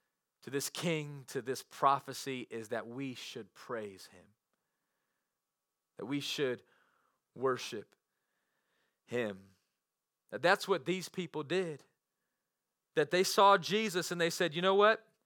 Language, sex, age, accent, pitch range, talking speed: English, male, 30-49, American, 175-225 Hz, 125 wpm